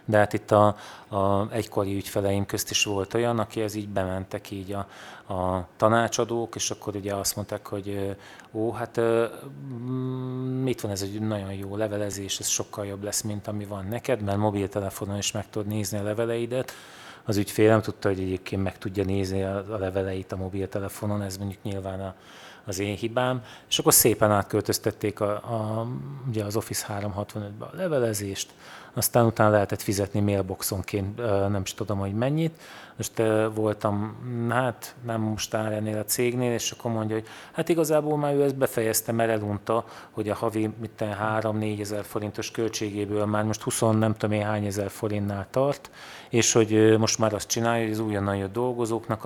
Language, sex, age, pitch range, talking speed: Hungarian, male, 30-49, 100-115 Hz, 170 wpm